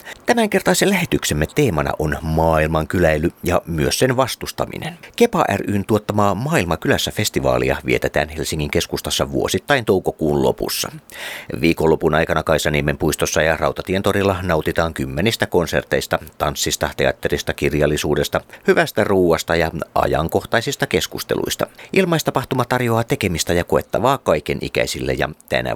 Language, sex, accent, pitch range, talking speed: Finnish, male, native, 75-110 Hz, 105 wpm